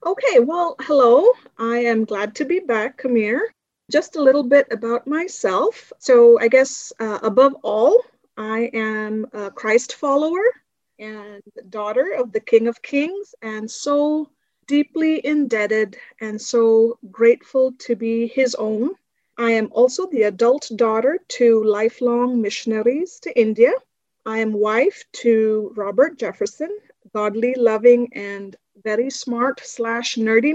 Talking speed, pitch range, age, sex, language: 140 wpm, 225-300 Hz, 30-49, female, English